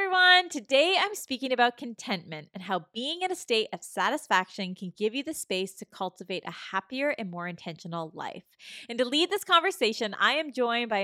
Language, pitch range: English, 185-265 Hz